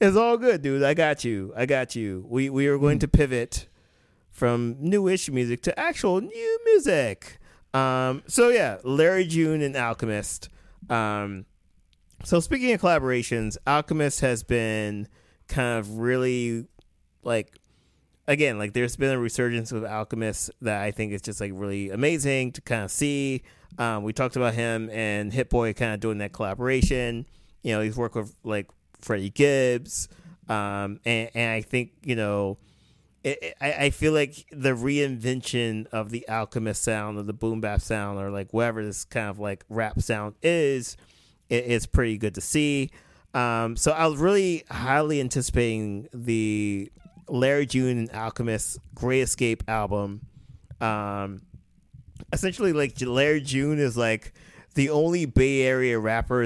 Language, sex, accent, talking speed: English, male, American, 160 wpm